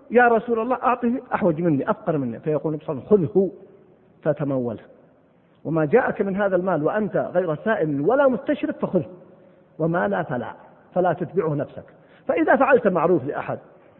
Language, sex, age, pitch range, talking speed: Arabic, male, 50-69, 160-230 Hz, 140 wpm